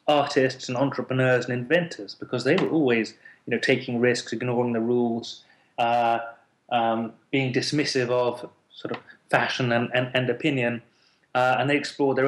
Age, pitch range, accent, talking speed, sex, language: 30-49, 120-135 Hz, British, 160 wpm, male, English